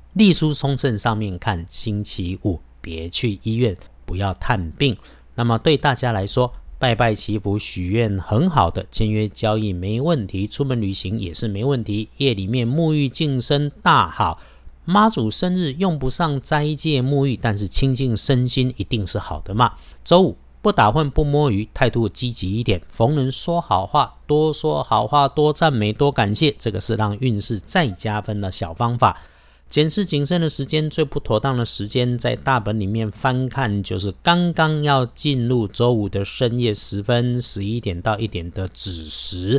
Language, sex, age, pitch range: Chinese, male, 50-69, 100-140 Hz